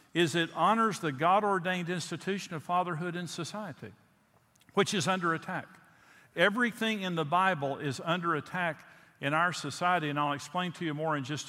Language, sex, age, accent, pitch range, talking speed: English, male, 50-69, American, 135-165 Hz, 165 wpm